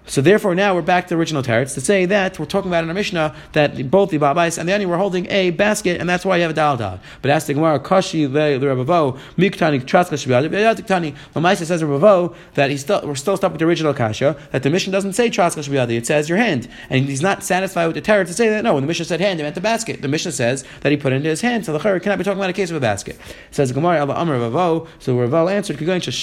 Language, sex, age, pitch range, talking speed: English, male, 30-49, 145-190 Hz, 270 wpm